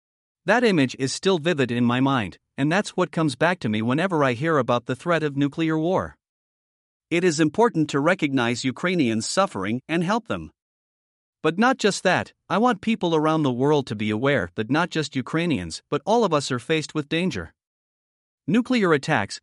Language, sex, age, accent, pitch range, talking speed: English, male, 50-69, American, 130-175 Hz, 190 wpm